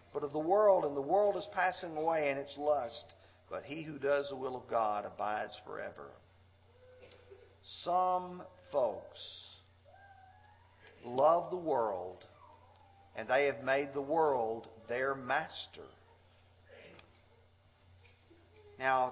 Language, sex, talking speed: English, male, 115 wpm